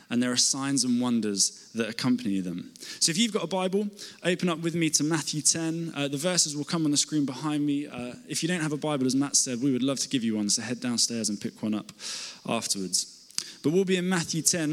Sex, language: male, English